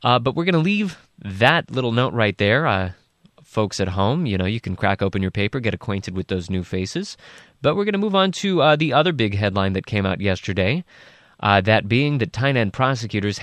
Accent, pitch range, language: American, 105-135 Hz, English